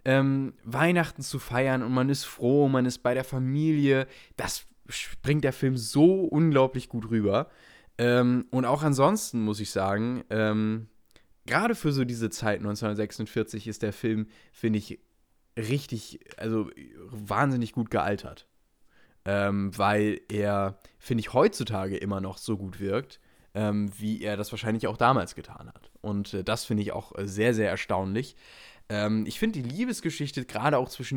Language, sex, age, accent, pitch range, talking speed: German, male, 10-29, German, 105-130 Hz, 155 wpm